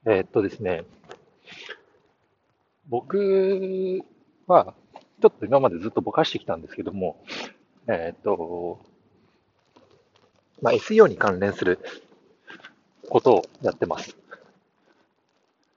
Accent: native